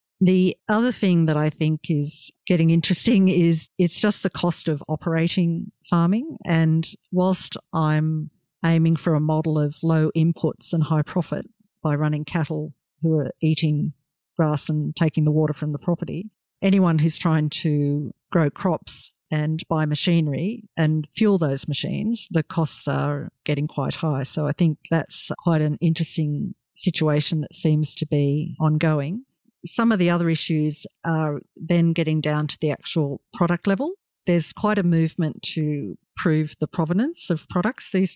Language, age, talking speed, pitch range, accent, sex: English, 50-69, 160 wpm, 155-175 Hz, Australian, female